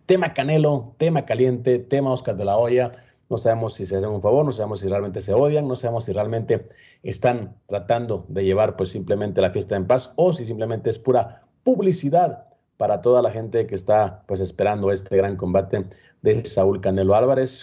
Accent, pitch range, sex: Mexican, 100-125 Hz, male